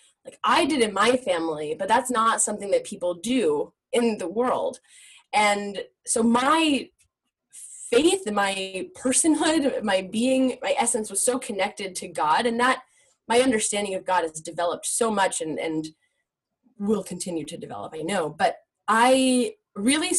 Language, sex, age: English, female, 10-29